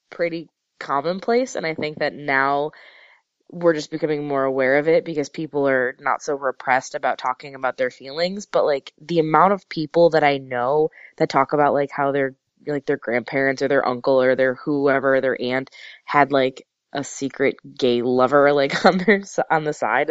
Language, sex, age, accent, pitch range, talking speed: English, female, 20-39, American, 135-165 Hz, 185 wpm